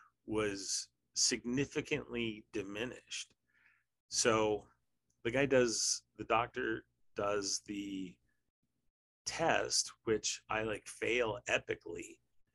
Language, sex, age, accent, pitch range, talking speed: English, male, 30-49, American, 95-125 Hz, 80 wpm